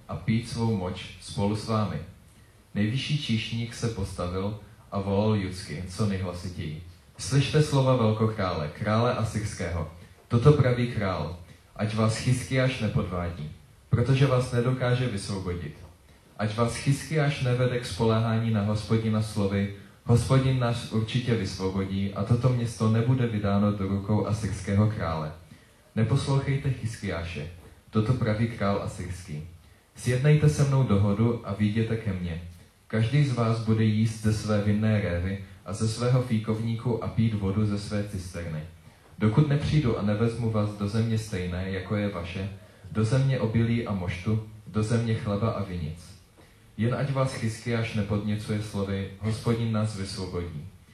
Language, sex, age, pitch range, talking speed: Czech, male, 30-49, 95-115 Hz, 140 wpm